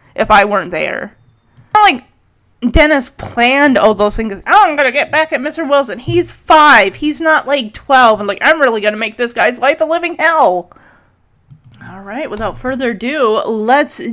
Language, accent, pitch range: English, American, 205-285 Hz